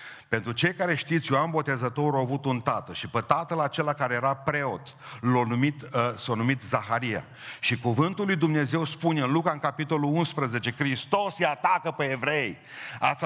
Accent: native